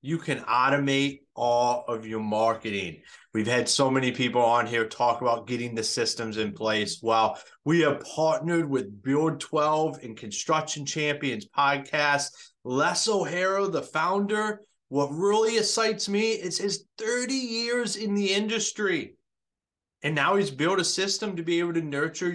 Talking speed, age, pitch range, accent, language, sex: 155 wpm, 30-49, 135-200 Hz, American, English, male